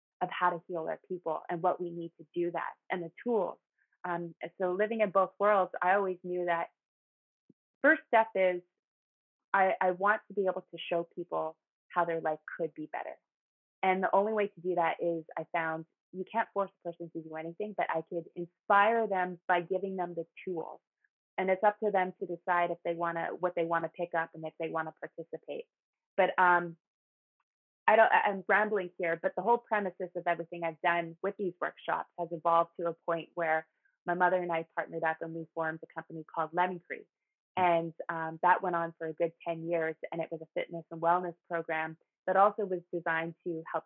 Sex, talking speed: female, 215 wpm